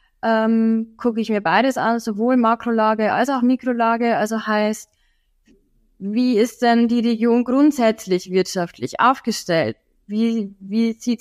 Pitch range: 200-240 Hz